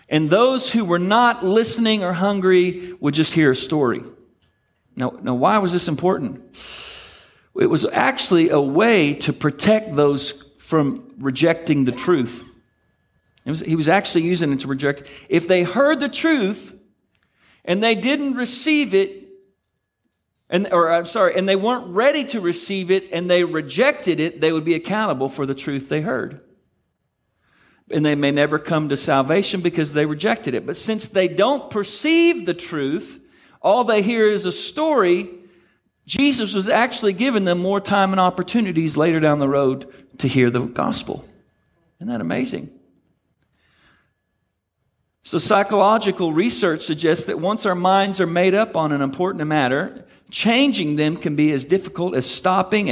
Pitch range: 150-210 Hz